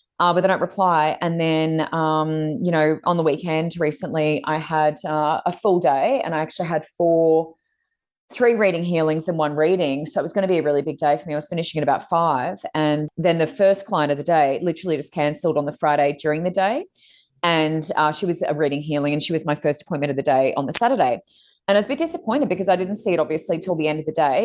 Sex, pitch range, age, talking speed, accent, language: female, 150-180 Hz, 20-39, 255 wpm, Australian, English